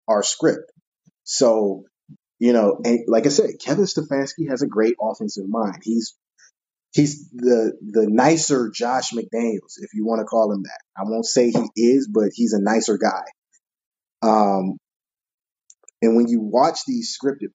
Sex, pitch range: male, 110-140 Hz